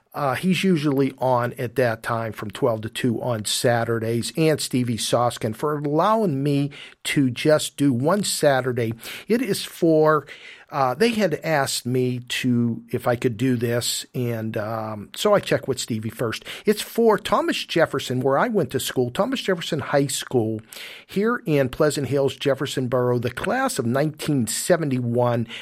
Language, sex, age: English, male, 50-69